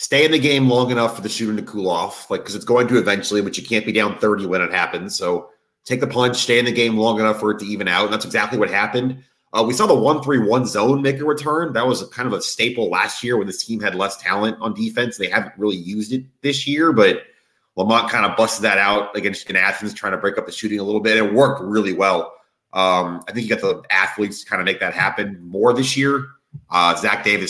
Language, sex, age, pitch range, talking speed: English, male, 30-49, 95-115 Hz, 270 wpm